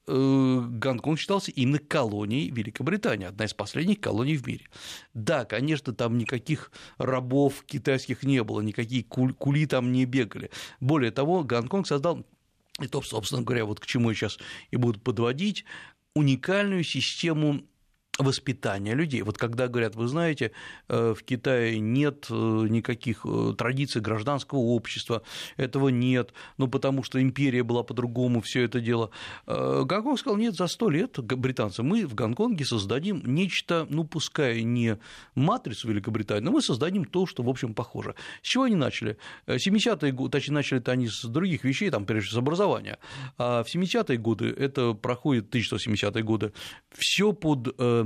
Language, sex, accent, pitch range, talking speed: Russian, male, native, 115-145 Hz, 150 wpm